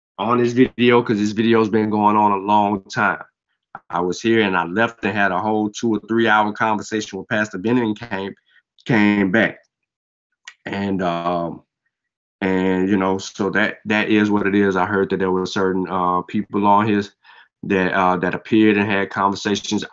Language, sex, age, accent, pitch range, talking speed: English, male, 20-39, American, 95-105 Hz, 185 wpm